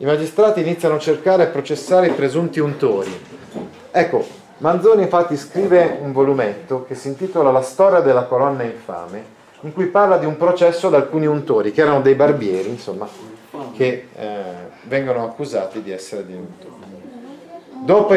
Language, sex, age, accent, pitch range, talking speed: Italian, male, 40-59, native, 130-180 Hz, 155 wpm